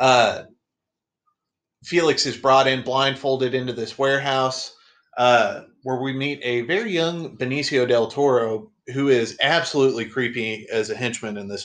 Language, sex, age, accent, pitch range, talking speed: English, male, 30-49, American, 120-145 Hz, 145 wpm